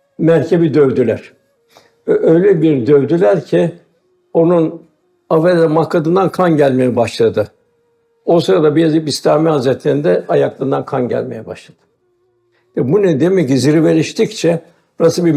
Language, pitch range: Turkish, 145-175 Hz